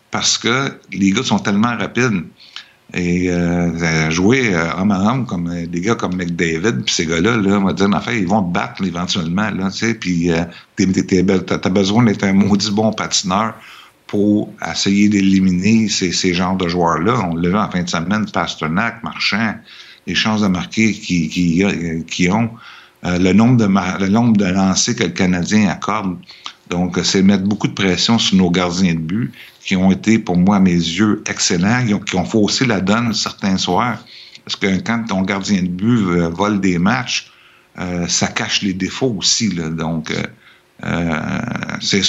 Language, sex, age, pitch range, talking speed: French, male, 60-79, 90-105 Hz, 190 wpm